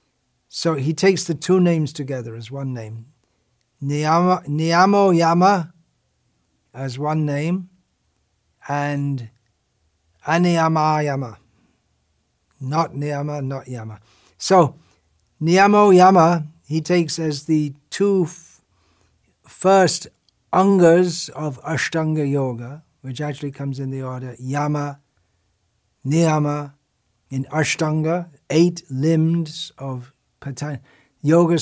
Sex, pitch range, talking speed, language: male, 125-160 Hz, 95 wpm, English